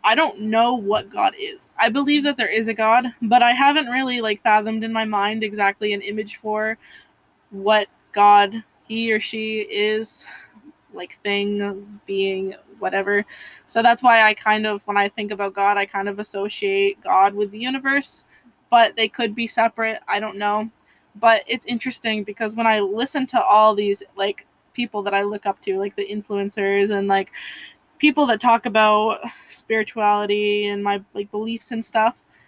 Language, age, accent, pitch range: English, 20-39, American, 205-235 Hz